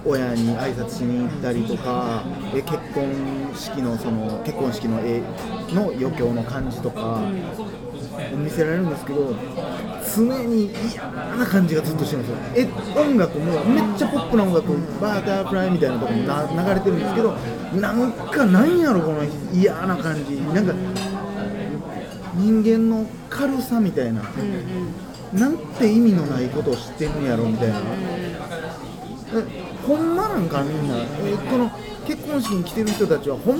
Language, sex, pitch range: Japanese, male, 140-225 Hz